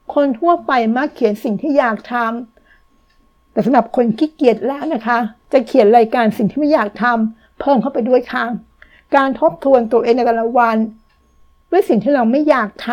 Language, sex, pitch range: Thai, female, 220-260 Hz